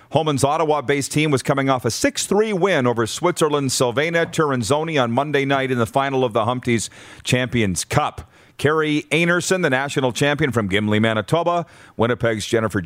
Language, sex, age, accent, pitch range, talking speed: English, male, 40-59, American, 110-140 Hz, 160 wpm